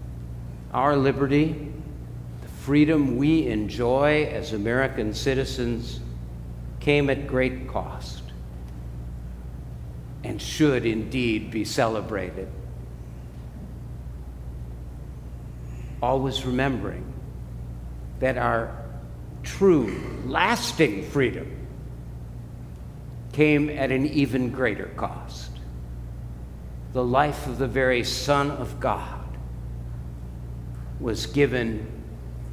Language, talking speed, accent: English, 75 wpm, American